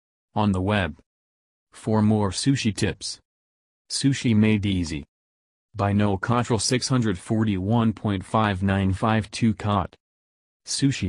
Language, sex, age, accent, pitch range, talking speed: English, male, 40-59, American, 90-115 Hz, 85 wpm